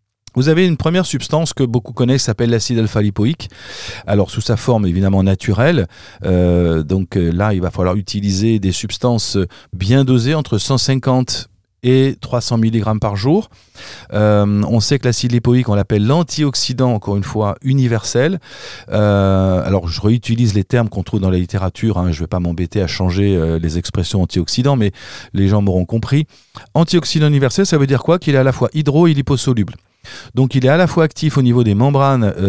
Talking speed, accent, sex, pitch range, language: 185 wpm, French, male, 100-130 Hz, French